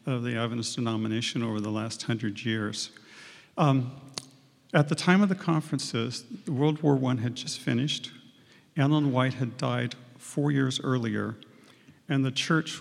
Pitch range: 115-140 Hz